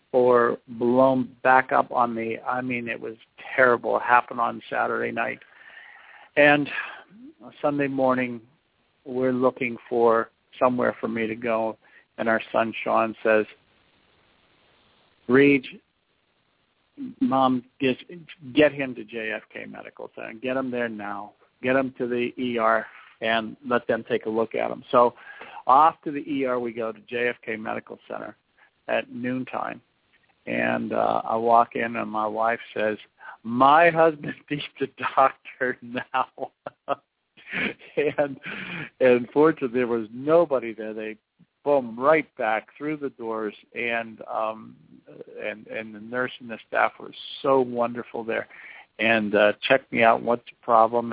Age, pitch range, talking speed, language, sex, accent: 50-69, 110-130 Hz, 140 wpm, English, male, American